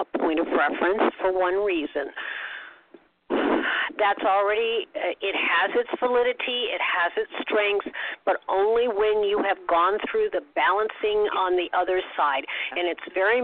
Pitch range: 175-245 Hz